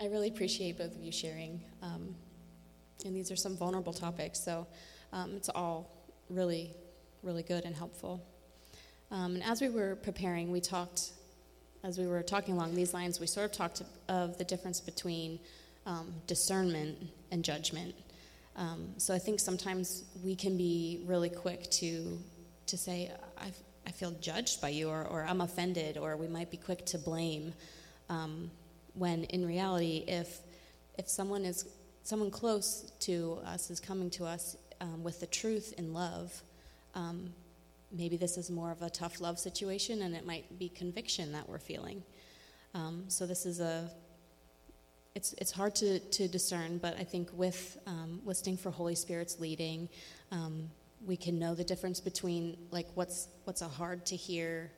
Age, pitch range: 20-39, 170-185 Hz